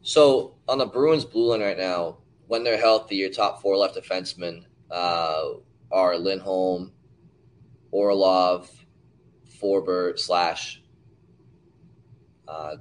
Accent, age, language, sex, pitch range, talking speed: American, 20-39, English, male, 90-110 Hz, 110 wpm